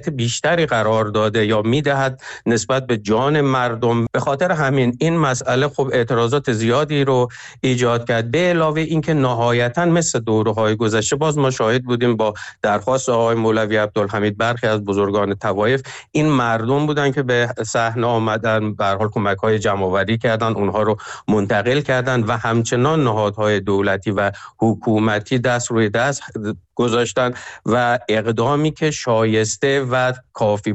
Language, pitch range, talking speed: Persian, 110-135 Hz, 140 wpm